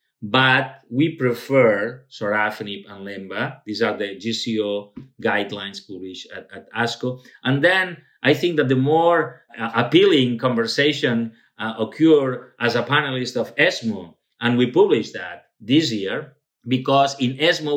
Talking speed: 140 wpm